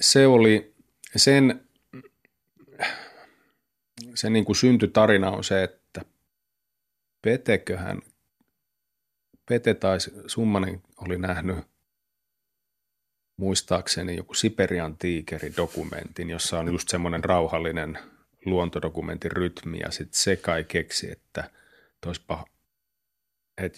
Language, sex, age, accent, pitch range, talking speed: Finnish, male, 30-49, native, 85-100 Hz, 90 wpm